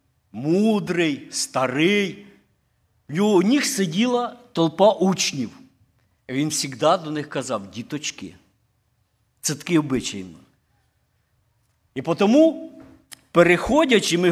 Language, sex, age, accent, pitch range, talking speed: Ukrainian, male, 50-69, native, 120-175 Hz, 95 wpm